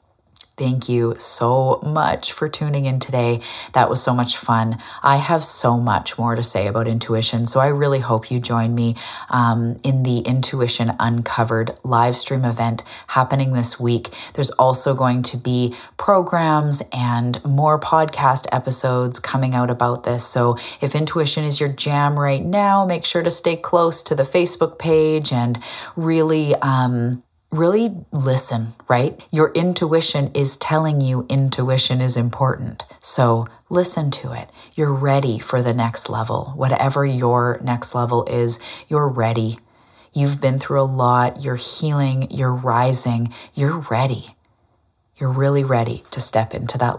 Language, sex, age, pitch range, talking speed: English, female, 30-49, 120-145 Hz, 155 wpm